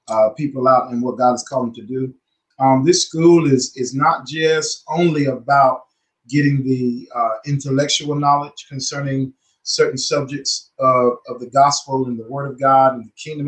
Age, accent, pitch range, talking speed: 30-49, American, 130-150 Hz, 180 wpm